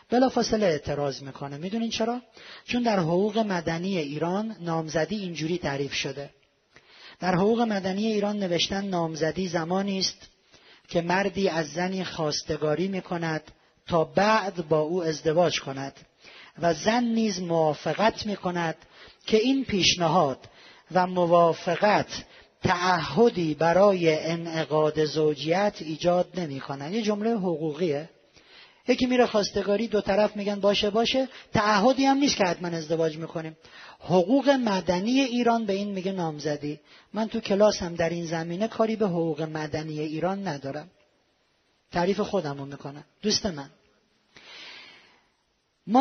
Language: Persian